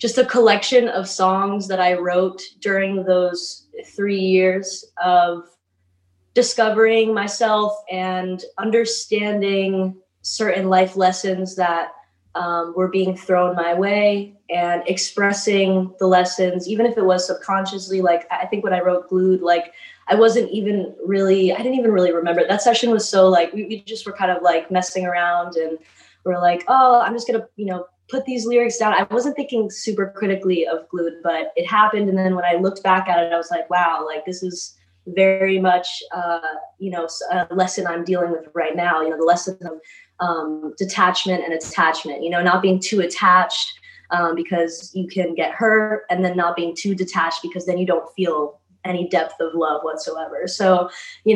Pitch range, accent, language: 175-205 Hz, American, English